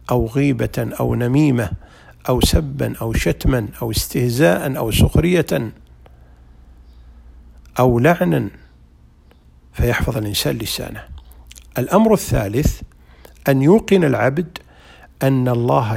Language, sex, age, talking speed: Arabic, male, 50-69, 90 wpm